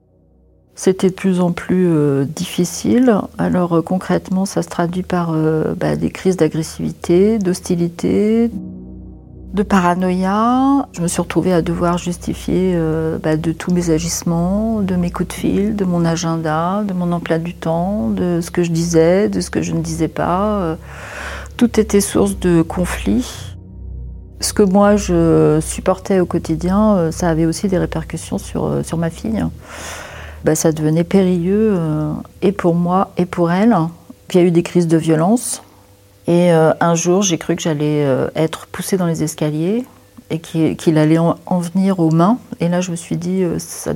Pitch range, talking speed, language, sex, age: 160-190 Hz, 175 wpm, French, female, 40-59